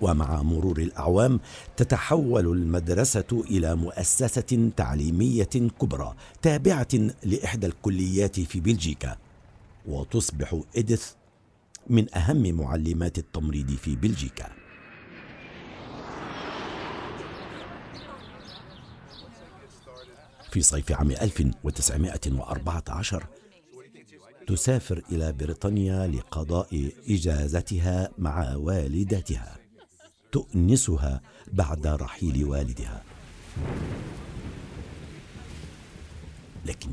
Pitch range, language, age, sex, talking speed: 75-105 Hz, Arabic, 60-79, male, 60 wpm